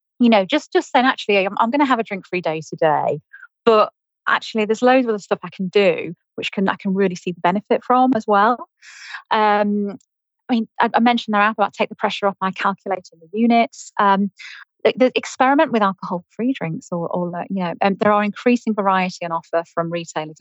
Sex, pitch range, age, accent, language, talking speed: female, 180-225 Hz, 30-49, British, English, 220 wpm